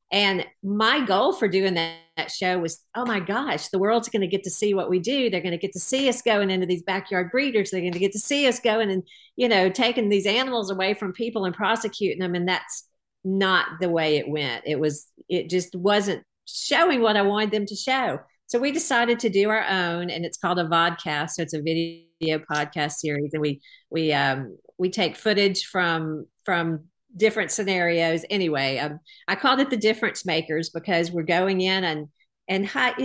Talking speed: 215 wpm